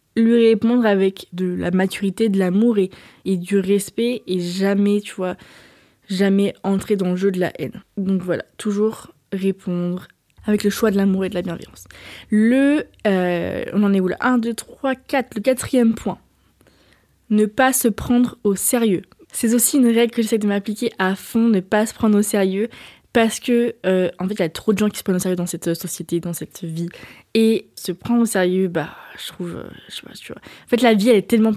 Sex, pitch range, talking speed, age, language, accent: female, 195-230 Hz, 220 wpm, 20-39, French, French